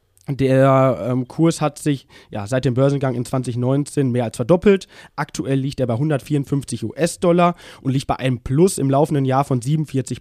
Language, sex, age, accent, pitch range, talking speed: German, male, 20-39, German, 130-155 Hz, 175 wpm